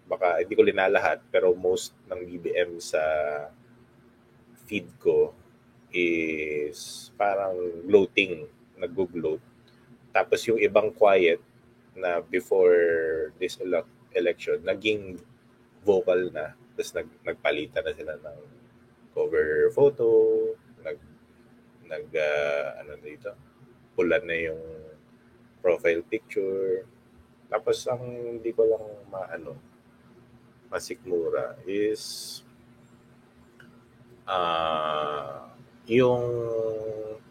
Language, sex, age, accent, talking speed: Filipino, male, 20-39, native, 90 wpm